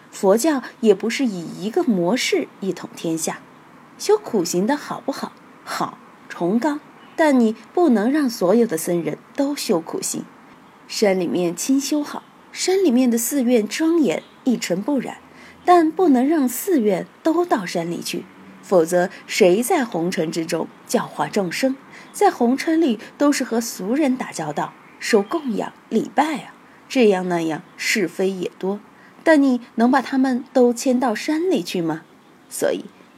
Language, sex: Chinese, female